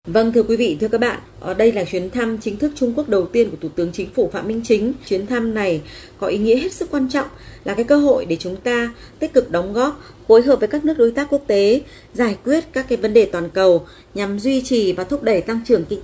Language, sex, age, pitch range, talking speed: Vietnamese, female, 20-39, 195-250 Hz, 275 wpm